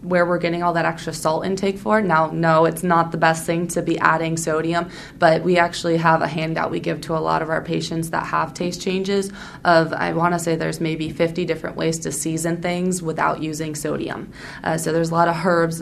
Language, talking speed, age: English, 230 wpm, 20-39